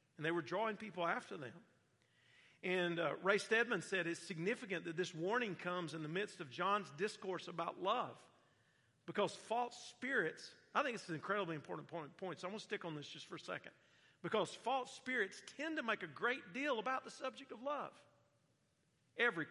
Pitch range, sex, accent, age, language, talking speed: 135-205 Hz, male, American, 50-69, English, 190 wpm